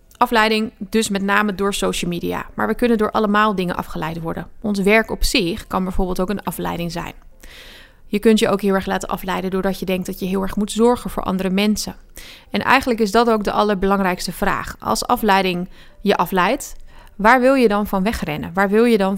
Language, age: Dutch, 30-49